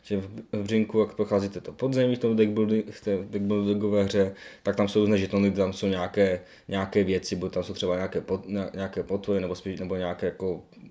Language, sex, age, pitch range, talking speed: Czech, male, 20-39, 95-110 Hz, 195 wpm